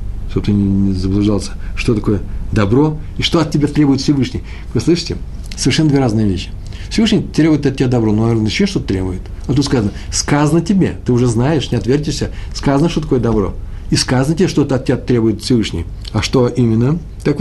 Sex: male